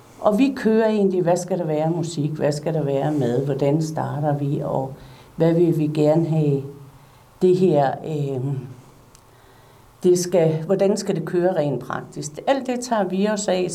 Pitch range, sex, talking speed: 145-195 Hz, female, 160 wpm